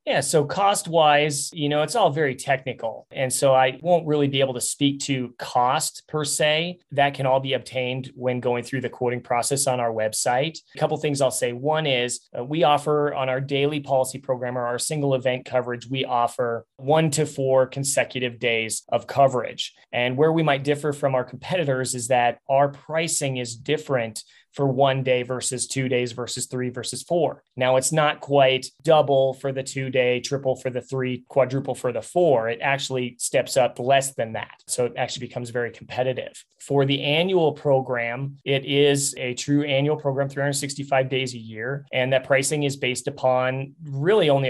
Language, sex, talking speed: English, male, 190 wpm